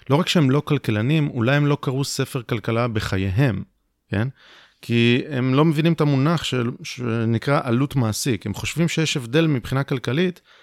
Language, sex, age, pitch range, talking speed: Hebrew, male, 30-49, 105-150 Hz, 160 wpm